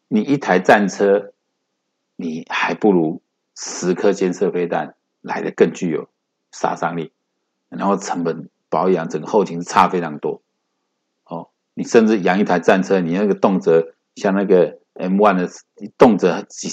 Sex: male